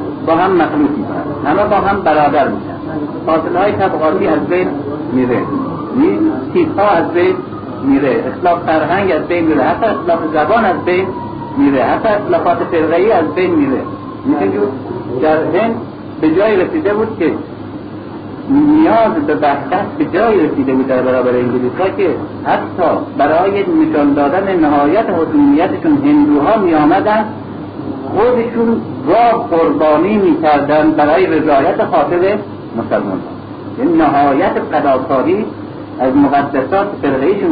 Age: 60-79